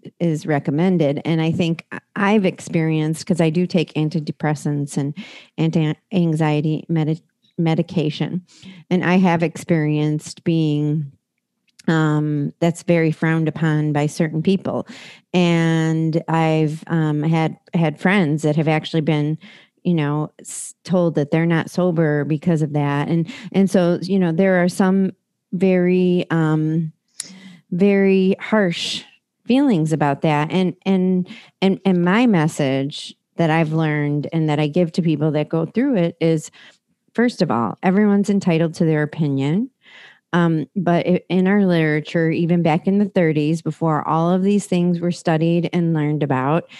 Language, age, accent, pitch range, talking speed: English, 40-59, American, 155-185 Hz, 145 wpm